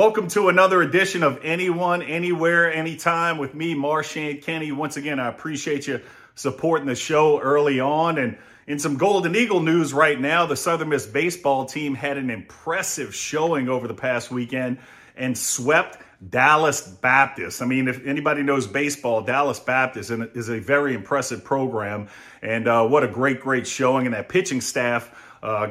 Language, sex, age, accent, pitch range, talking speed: English, male, 40-59, American, 120-145 Hz, 170 wpm